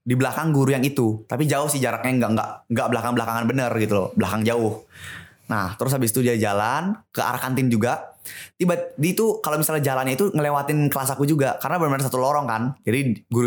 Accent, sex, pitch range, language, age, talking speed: native, male, 115-140 Hz, Indonesian, 20-39, 195 wpm